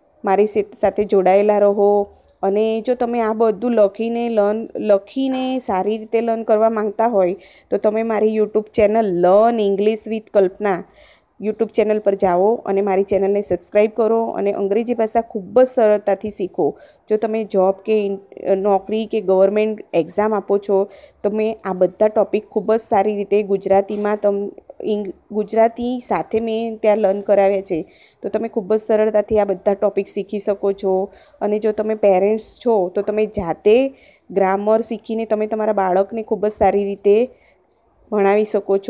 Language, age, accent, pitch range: Gujarati, 20-39, native, 195-220 Hz